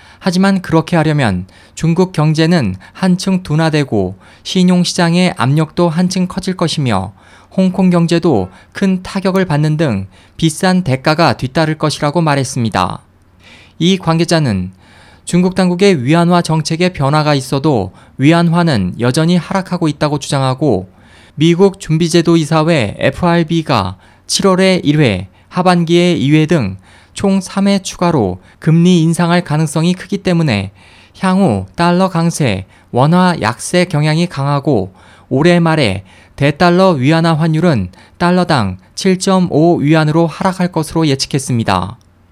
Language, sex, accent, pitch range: Korean, male, native, 105-175 Hz